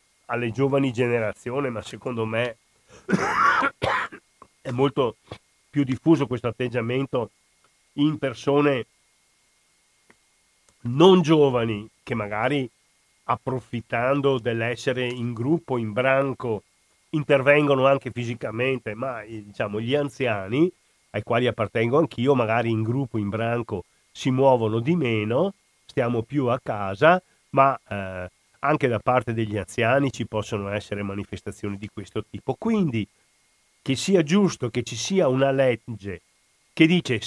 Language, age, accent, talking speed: Italian, 40-59, native, 120 wpm